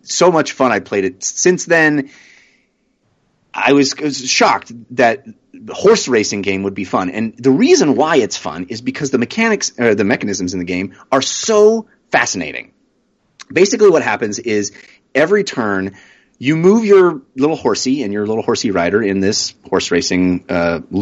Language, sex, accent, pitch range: English, male, American, 105-150 Hz